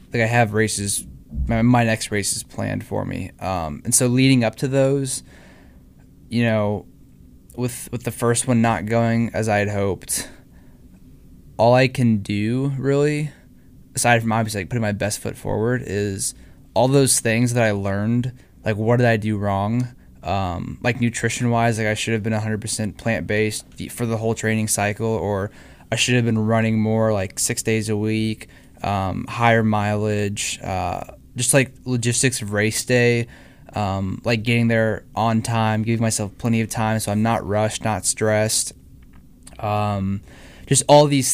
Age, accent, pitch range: 20-39, American, 105-120 Hz